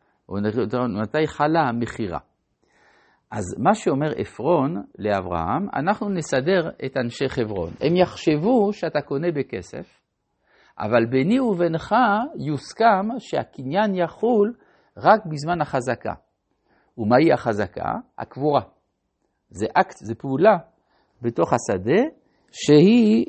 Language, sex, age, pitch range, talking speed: Hebrew, male, 60-79, 115-175 Hz, 100 wpm